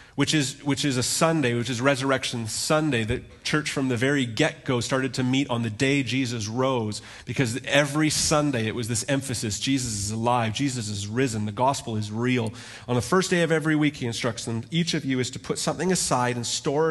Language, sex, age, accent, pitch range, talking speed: English, male, 30-49, American, 115-150 Hz, 215 wpm